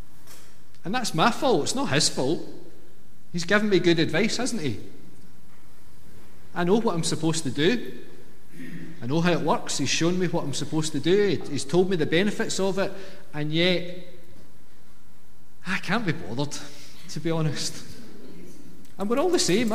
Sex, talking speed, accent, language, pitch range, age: male, 170 wpm, British, English, 135-180 Hz, 40-59